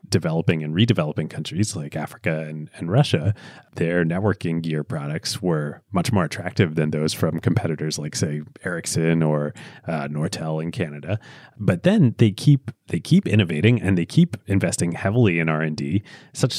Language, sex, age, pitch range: English, male, 30-49, 85-115 Hz